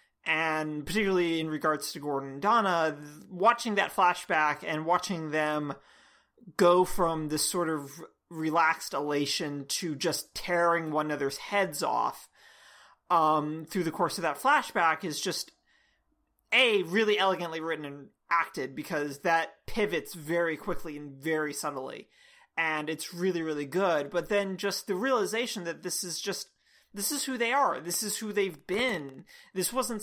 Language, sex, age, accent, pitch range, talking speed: English, male, 30-49, American, 155-195 Hz, 155 wpm